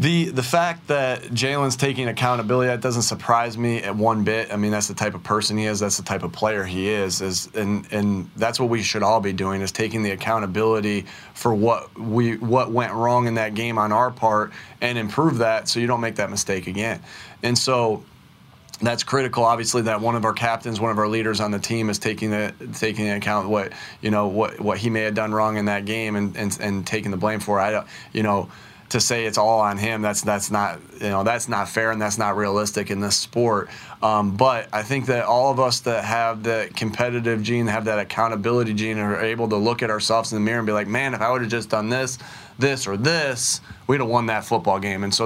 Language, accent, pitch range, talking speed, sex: English, American, 105-120 Hz, 235 wpm, male